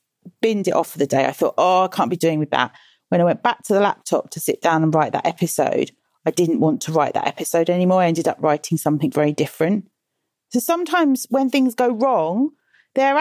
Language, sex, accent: English, female, British